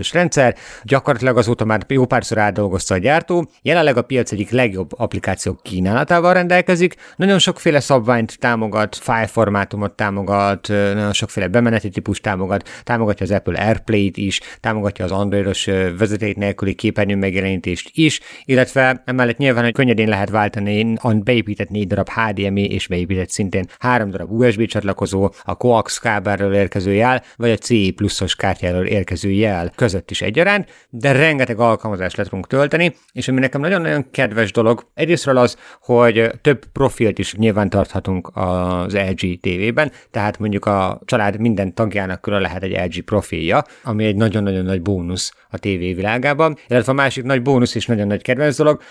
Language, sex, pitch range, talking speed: Hungarian, male, 100-130 Hz, 150 wpm